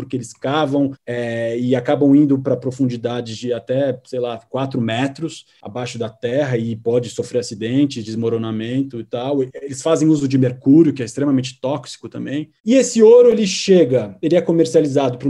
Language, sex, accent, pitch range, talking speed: Portuguese, male, Brazilian, 135-180 Hz, 175 wpm